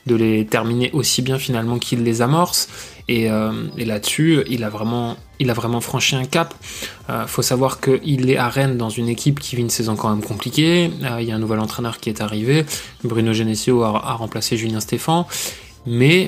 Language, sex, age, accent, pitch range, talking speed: French, male, 20-39, French, 115-145 Hz, 215 wpm